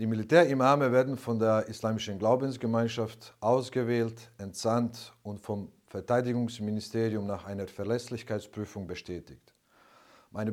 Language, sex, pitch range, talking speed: German, male, 105-125 Hz, 95 wpm